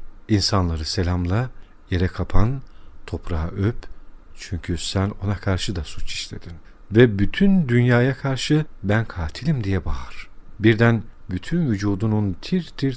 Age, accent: 50-69, native